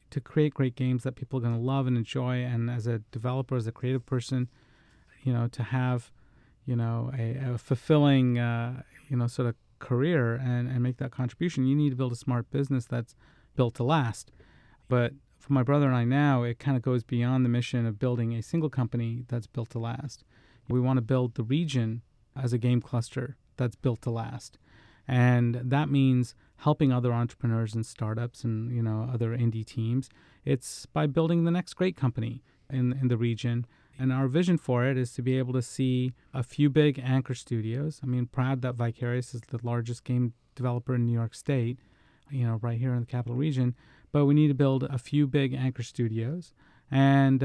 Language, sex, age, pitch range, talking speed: English, male, 40-59, 120-135 Hz, 205 wpm